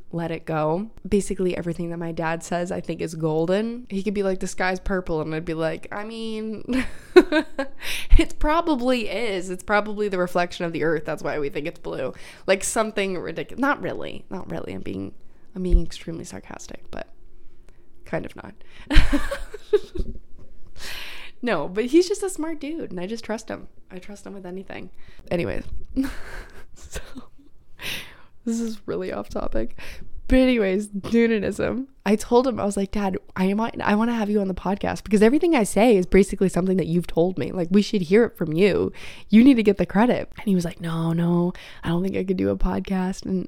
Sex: female